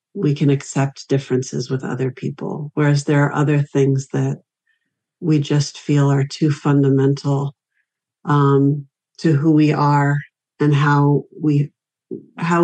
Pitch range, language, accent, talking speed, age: 140-155 Hz, English, American, 135 wpm, 50-69